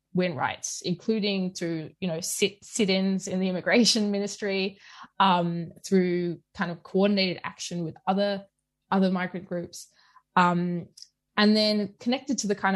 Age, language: 20-39, English